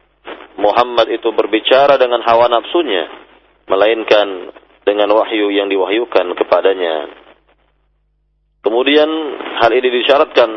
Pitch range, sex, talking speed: 110-135 Hz, male, 90 wpm